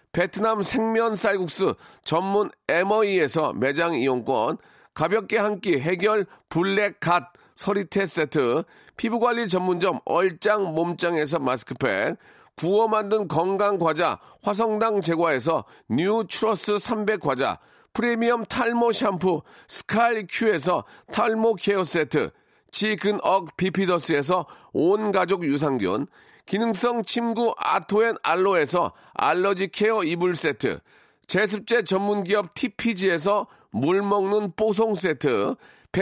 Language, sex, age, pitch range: Korean, male, 40-59, 175-220 Hz